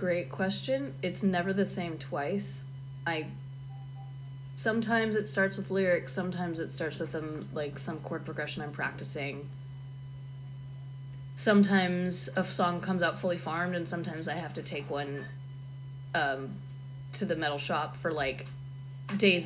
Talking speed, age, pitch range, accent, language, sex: 140 wpm, 20-39, 135-170 Hz, American, English, female